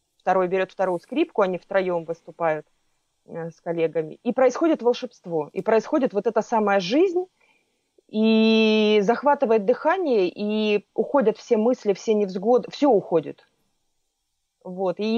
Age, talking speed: 20-39, 125 wpm